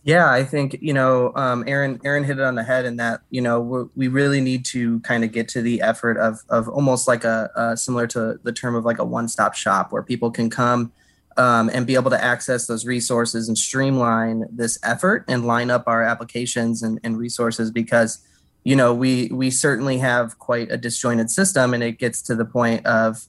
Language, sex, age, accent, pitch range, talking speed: English, male, 20-39, American, 115-130 Hz, 220 wpm